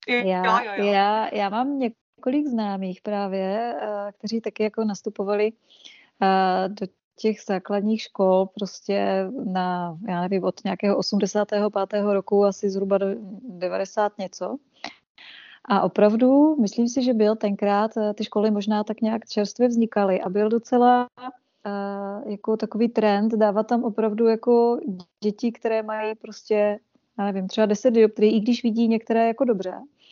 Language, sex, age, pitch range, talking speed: Czech, female, 20-39, 200-225 Hz, 130 wpm